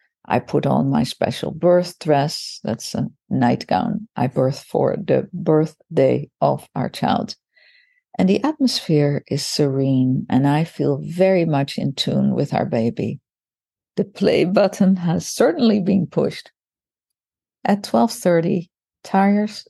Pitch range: 150-205 Hz